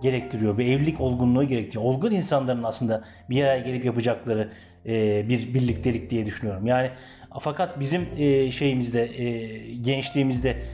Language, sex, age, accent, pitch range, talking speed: Turkish, male, 40-59, native, 125-155 Hz, 115 wpm